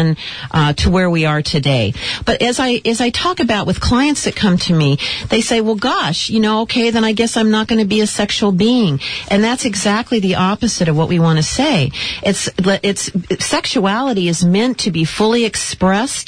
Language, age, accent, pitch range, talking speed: English, 50-69, American, 160-225 Hz, 210 wpm